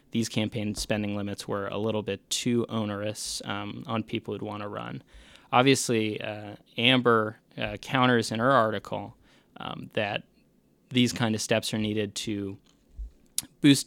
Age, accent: 20-39, American